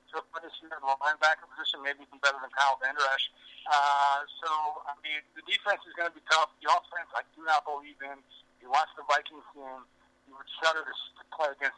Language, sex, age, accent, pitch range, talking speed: English, male, 60-79, American, 135-155 Hz, 195 wpm